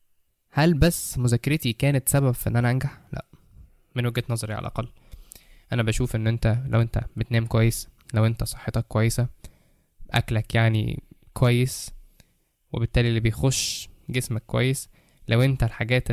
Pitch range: 110-125 Hz